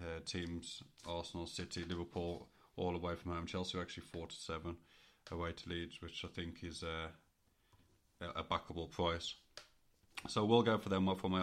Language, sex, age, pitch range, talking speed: English, male, 30-49, 85-90 Hz, 185 wpm